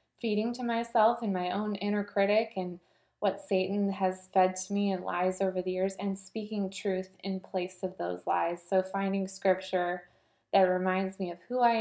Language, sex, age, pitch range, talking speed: English, female, 20-39, 185-205 Hz, 190 wpm